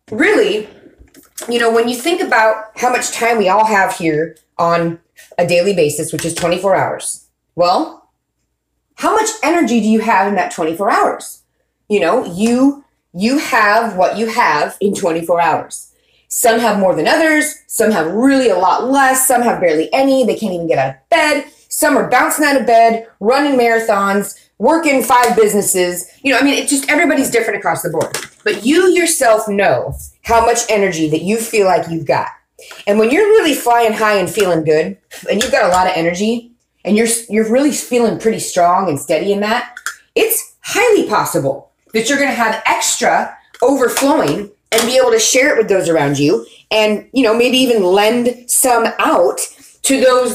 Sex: female